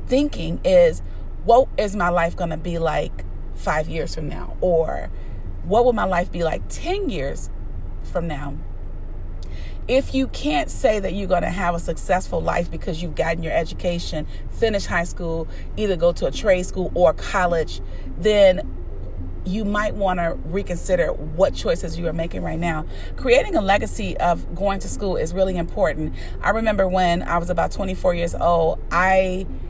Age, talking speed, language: 40-59, 175 wpm, English